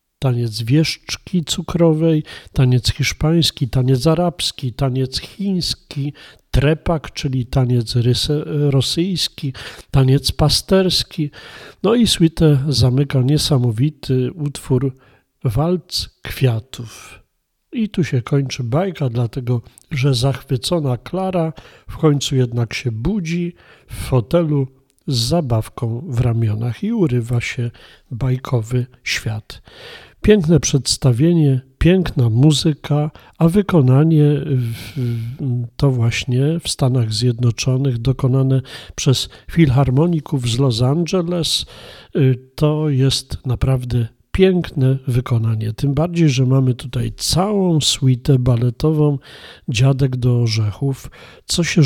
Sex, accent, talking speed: male, native, 95 wpm